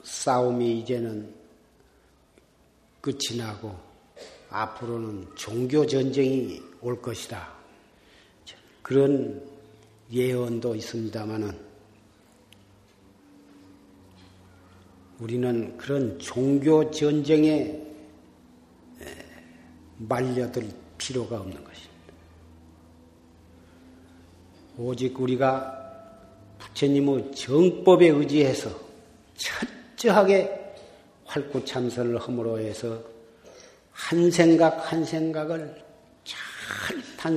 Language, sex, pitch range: Korean, male, 100-150 Hz